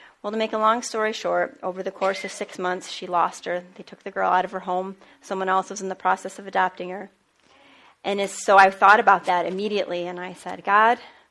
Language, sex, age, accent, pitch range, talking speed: English, female, 30-49, American, 190-235 Hz, 235 wpm